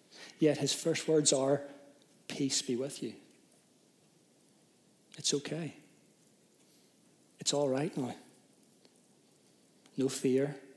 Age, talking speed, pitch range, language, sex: 40-59, 95 wpm, 125-150 Hz, English, male